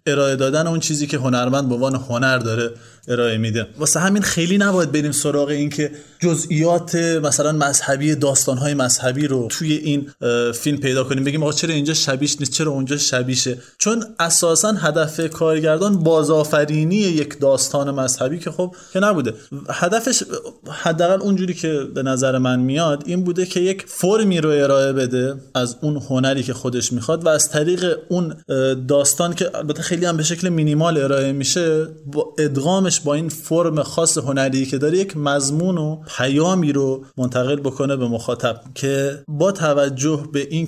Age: 20-39